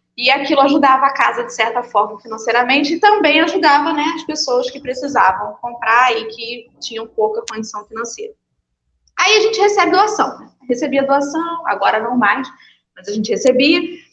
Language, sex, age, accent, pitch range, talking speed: Portuguese, female, 20-39, Brazilian, 245-375 Hz, 160 wpm